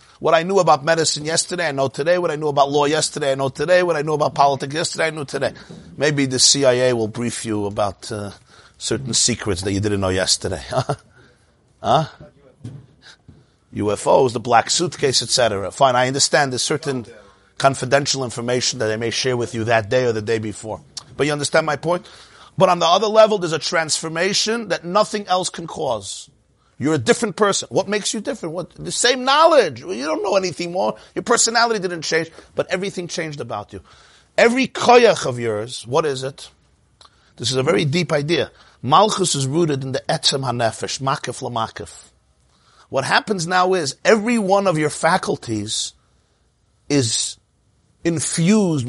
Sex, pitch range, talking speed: male, 115-175 Hz, 180 wpm